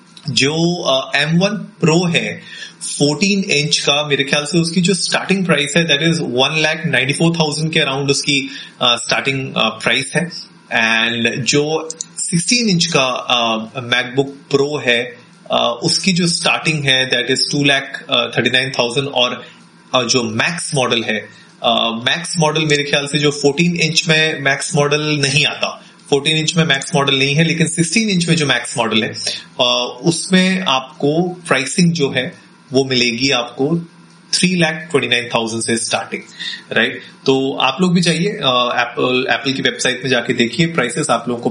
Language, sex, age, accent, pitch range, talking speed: Hindi, male, 30-49, native, 130-165 Hz, 165 wpm